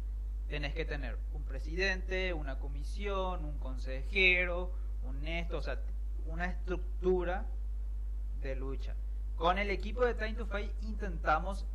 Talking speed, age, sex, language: 130 wpm, 30-49, male, Spanish